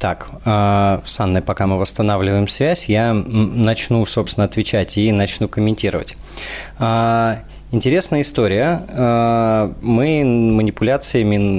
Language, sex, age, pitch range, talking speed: Russian, male, 20-39, 105-135 Hz, 95 wpm